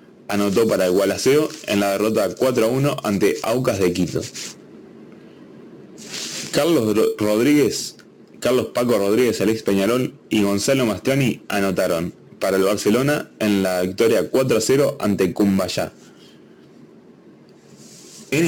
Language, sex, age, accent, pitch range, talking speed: Spanish, male, 20-39, Argentinian, 95-120 Hz, 115 wpm